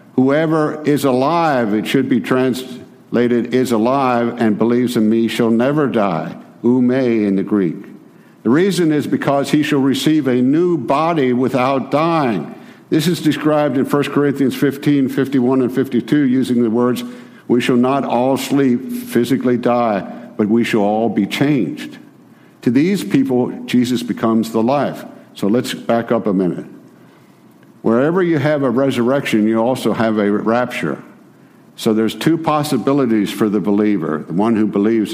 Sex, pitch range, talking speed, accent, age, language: male, 105-130 Hz, 160 wpm, American, 60-79, English